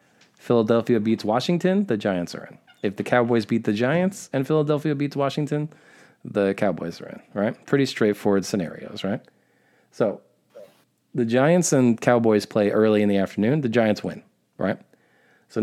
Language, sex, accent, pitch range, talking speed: English, male, American, 100-130 Hz, 155 wpm